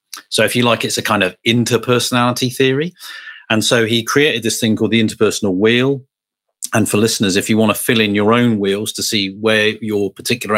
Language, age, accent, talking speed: English, 40-59, British, 210 wpm